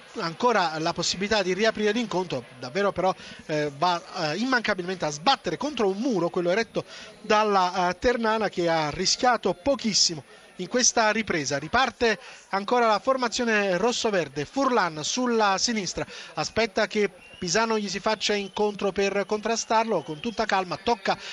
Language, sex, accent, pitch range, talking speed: Italian, male, native, 175-225 Hz, 140 wpm